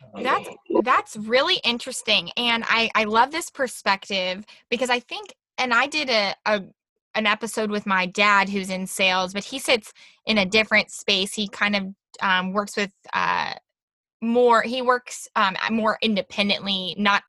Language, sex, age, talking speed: English, female, 20-39, 165 wpm